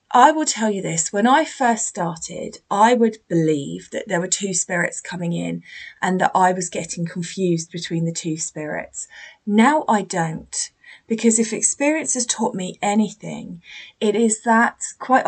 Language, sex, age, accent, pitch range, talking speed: English, female, 20-39, British, 175-230 Hz, 170 wpm